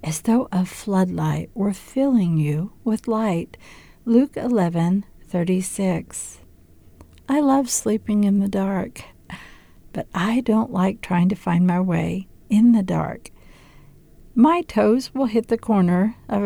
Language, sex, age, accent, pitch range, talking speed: English, female, 60-79, American, 180-230 Hz, 140 wpm